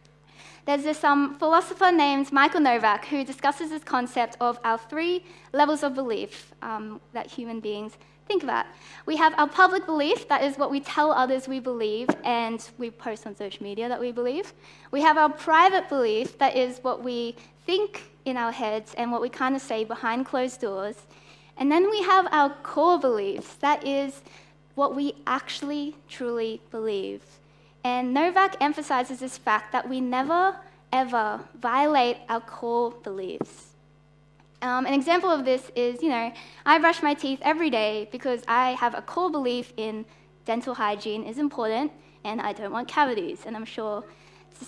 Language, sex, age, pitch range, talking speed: English, female, 10-29, 230-300 Hz, 175 wpm